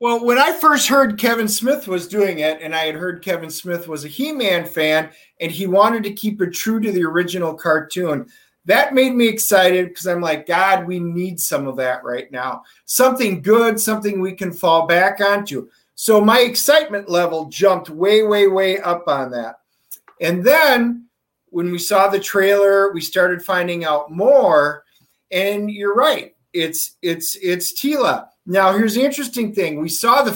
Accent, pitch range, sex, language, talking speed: American, 175-225 Hz, male, English, 180 wpm